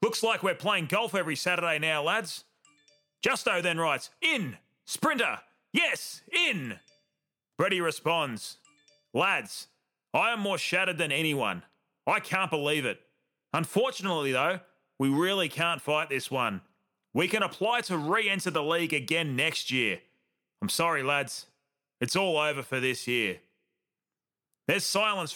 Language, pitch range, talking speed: English, 145-200 Hz, 135 wpm